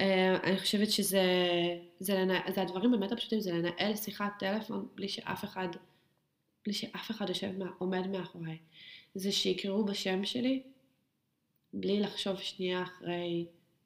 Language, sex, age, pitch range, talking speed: Hebrew, female, 20-39, 175-220 Hz, 130 wpm